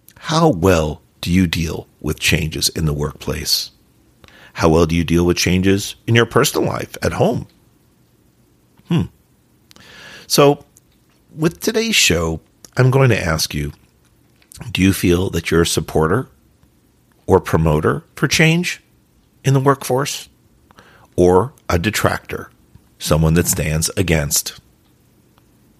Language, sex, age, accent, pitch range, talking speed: English, male, 50-69, American, 85-120 Hz, 125 wpm